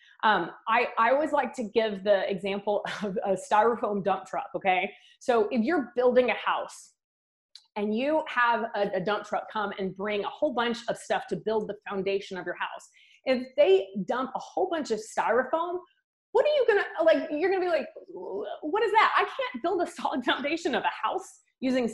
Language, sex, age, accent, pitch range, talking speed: English, female, 20-39, American, 220-345 Hz, 205 wpm